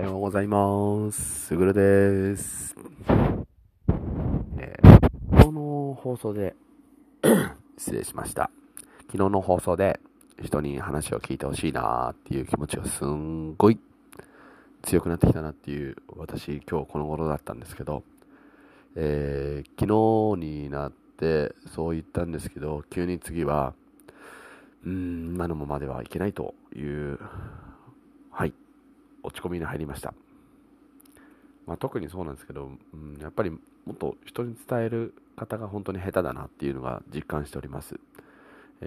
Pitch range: 75-115 Hz